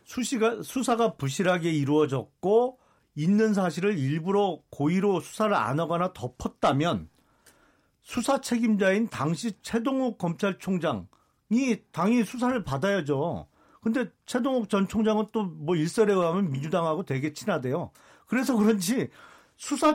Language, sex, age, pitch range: Korean, male, 40-59, 180-240 Hz